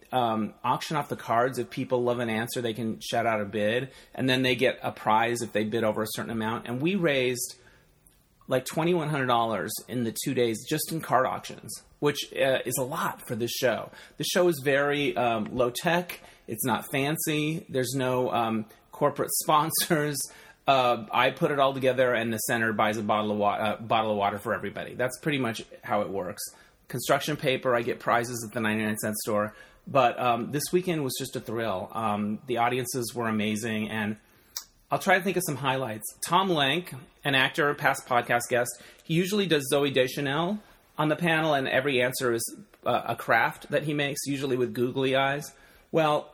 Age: 30-49